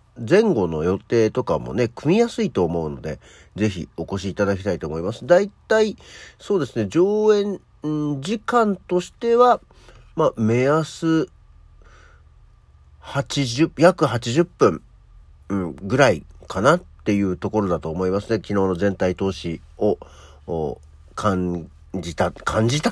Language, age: Japanese, 50-69